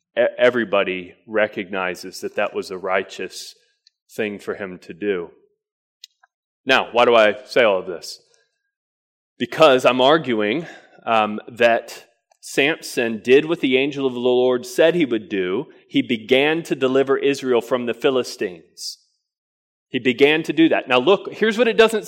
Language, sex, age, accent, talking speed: English, male, 30-49, American, 150 wpm